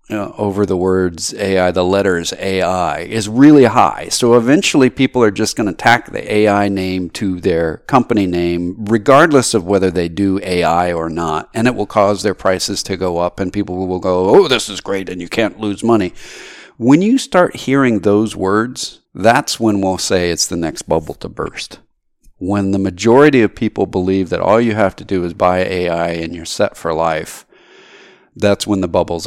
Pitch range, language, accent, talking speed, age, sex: 90-115 Hz, English, American, 195 wpm, 50-69, male